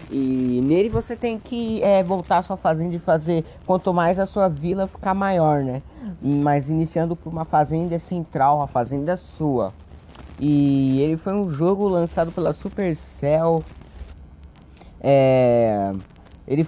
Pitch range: 135-175 Hz